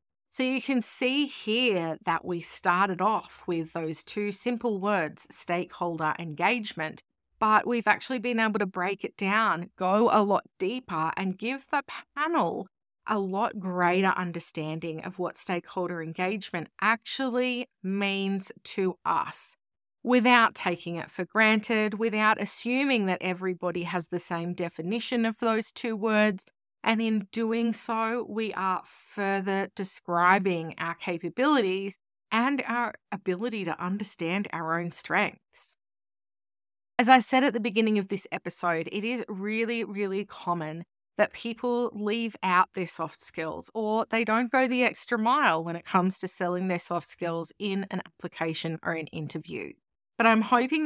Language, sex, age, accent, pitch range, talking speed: English, female, 30-49, Australian, 175-230 Hz, 145 wpm